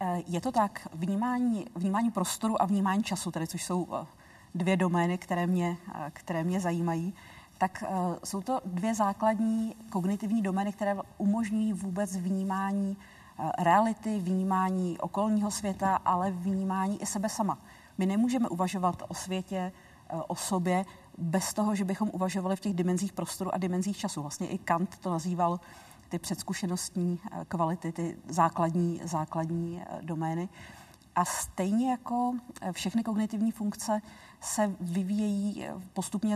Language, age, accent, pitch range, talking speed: Czech, 40-59, native, 175-200 Hz, 130 wpm